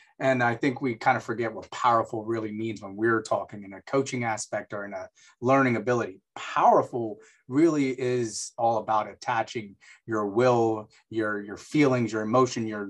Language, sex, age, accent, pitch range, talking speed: English, male, 30-49, American, 110-135 Hz, 170 wpm